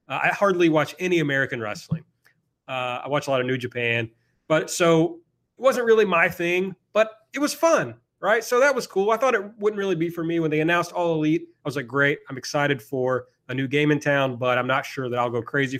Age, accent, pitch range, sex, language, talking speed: 30-49, American, 135-180 Hz, male, English, 240 wpm